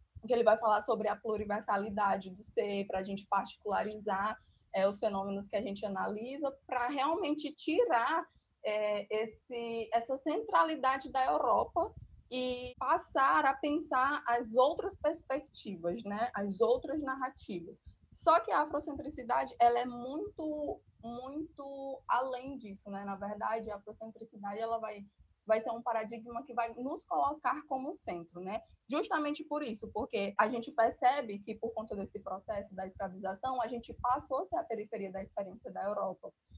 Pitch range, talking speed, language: 210-270 Hz, 145 wpm, Portuguese